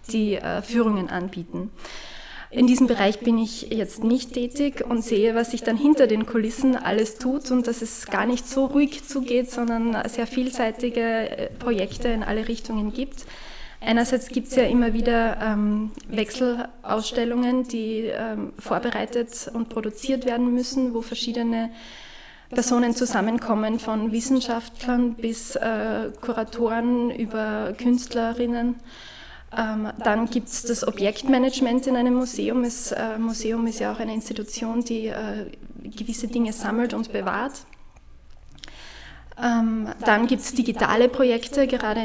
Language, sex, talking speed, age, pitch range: German, female, 130 wpm, 20-39, 220-245 Hz